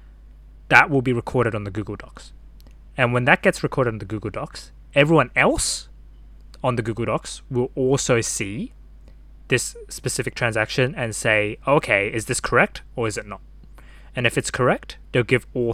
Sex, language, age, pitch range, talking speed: male, English, 20-39, 105-130 Hz, 175 wpm